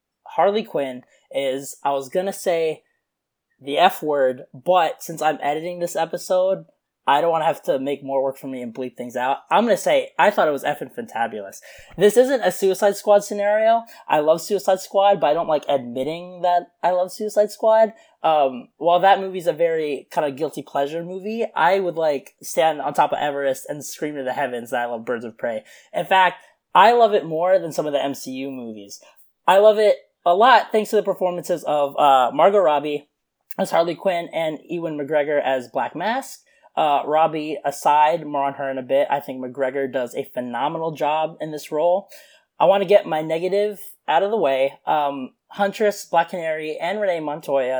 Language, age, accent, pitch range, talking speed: English, 20-39, American, 140-205 Hz, 205 wpm